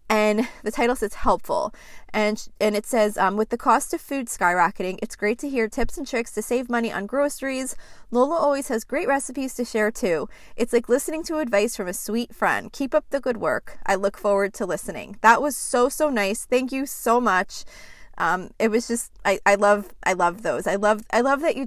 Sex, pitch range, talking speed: female, 200-245 Hz, 220 wpm